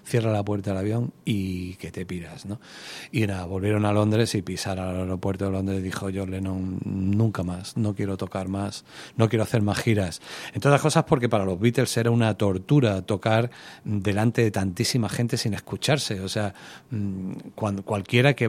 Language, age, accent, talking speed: Spanish, 40-59, Spanish, 190 wpm